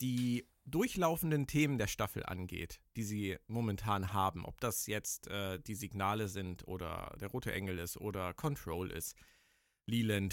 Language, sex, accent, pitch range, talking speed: German, male, German, 105-130 Hz, 150 wpm